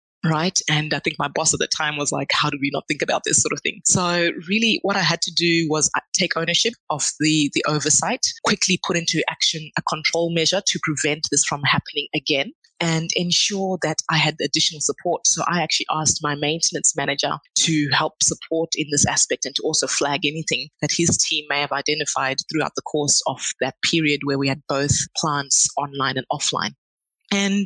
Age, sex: 20-39, female